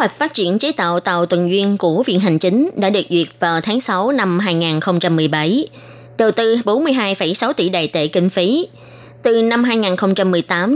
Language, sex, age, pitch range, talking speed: Vietnamese, female, 20-39, 175-240 Hz, 175 wpm